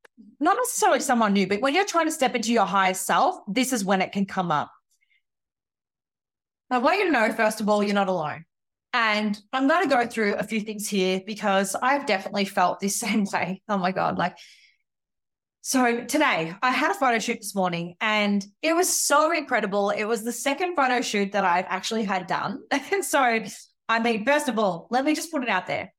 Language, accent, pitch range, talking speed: English, Australian, 200-260 Hz, 210 wpm